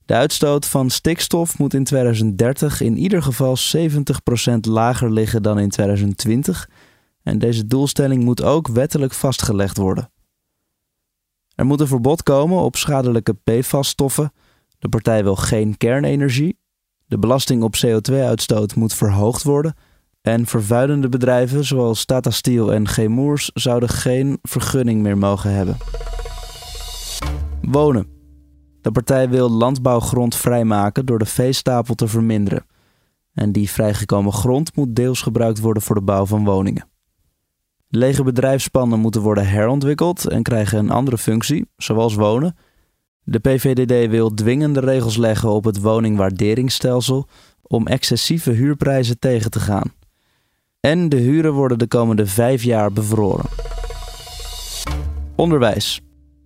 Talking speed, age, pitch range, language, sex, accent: 125 wpm, 20-39, 105-135 Hz, Dutch, male, Dutch